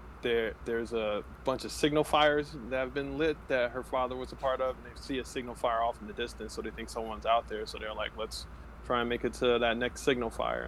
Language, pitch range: English, 110-125 Hz